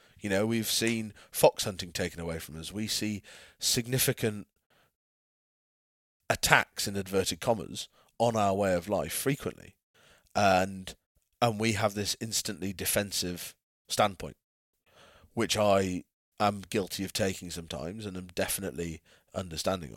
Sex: male